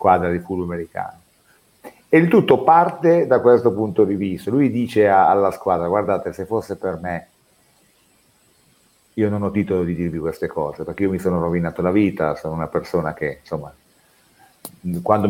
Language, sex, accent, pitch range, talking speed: Italian, male, native, 95-130 Hz, 170 wpm